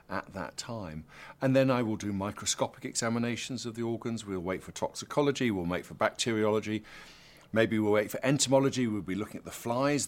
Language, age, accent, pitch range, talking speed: English, 50-69, British, 105-130 Hz, 190 wpm